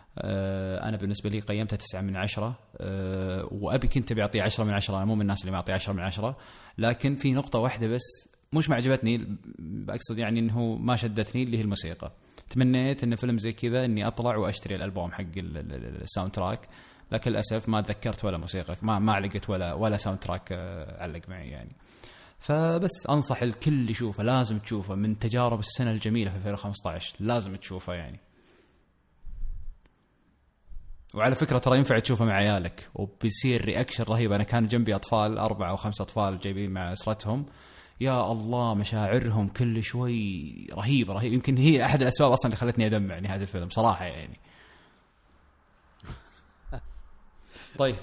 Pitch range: 95-120 Hz